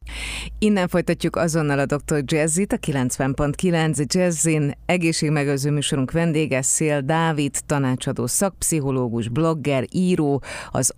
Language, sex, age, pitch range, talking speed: Hungarian, female, 30-49, 125-155 Hz, 105 wpm